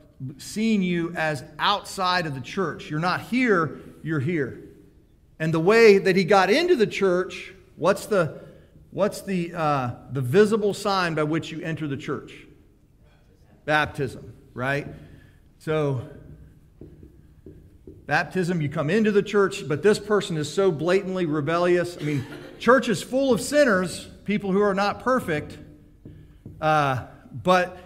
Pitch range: 150-190 Hz